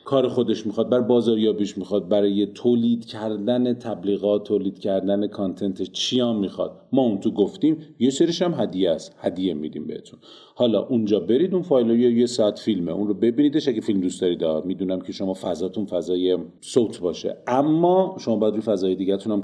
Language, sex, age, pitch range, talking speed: Persian, male, 40-59, 100-130 Hz, 180 wpm